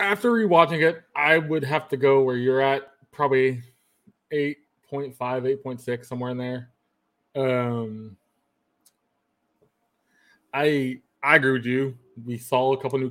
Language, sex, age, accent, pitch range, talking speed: English, male, 20-39, American, 120-140 Hz, 130 wpm